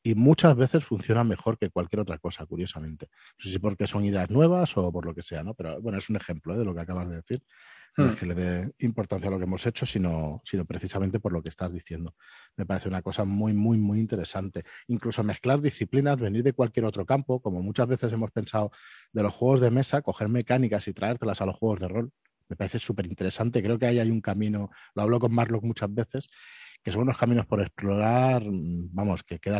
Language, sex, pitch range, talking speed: Spanish, male, 95-115 Hz, 230 wpm